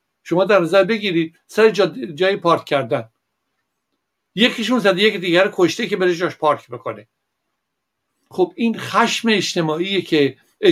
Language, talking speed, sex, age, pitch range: Persian, 135 wpm, male, 60-79, 145-175 Hz